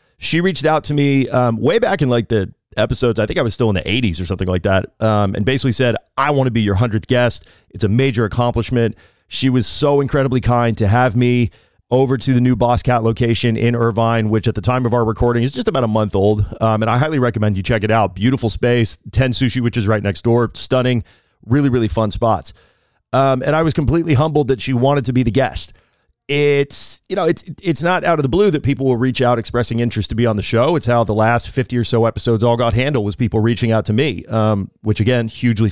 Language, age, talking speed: English, 30-49, 250 wpm